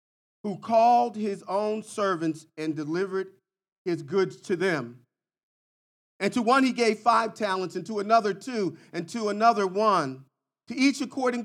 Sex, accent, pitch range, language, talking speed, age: male, American, 155-195 Hz, English, 150 wpm, 40-59